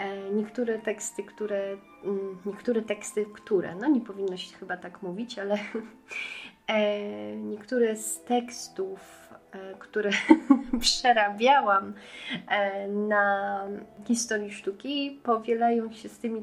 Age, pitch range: 30-49, 195-220 Hz